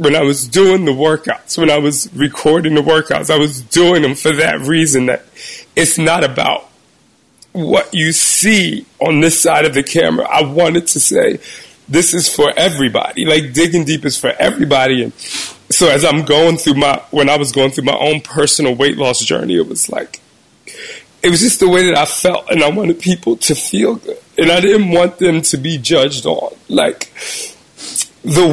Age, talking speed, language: 30-49, 195 wpm, English